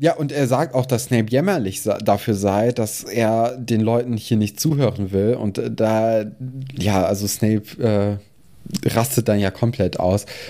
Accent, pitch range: German, 105-125 Hz